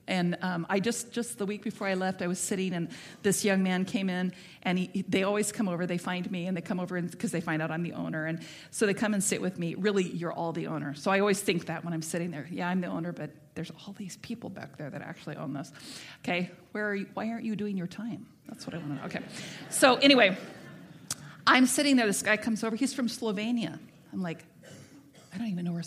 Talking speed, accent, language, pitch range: 255 wpm, American, English, 175-215 Hz